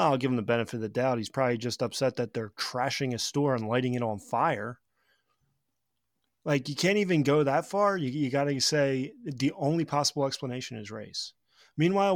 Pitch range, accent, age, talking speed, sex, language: 115-145 Hz, American, 30-49, 195 wpm, male, English